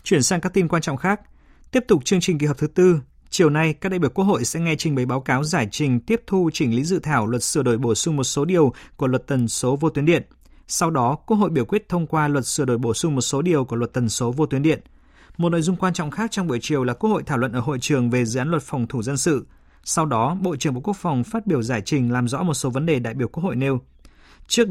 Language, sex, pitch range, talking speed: Vietnamese, male, 125-170 Hz, 295 wpm